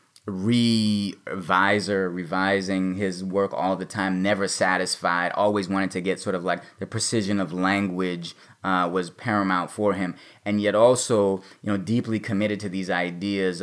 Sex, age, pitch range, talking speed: male, 20-39, 95-110 Hz, 155 wpm